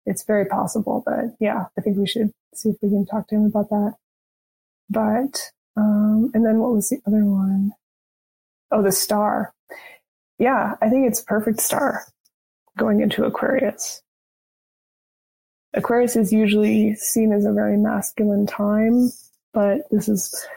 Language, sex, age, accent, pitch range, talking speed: English, female, 20-39, American, 200-235 Hz, 150 wpm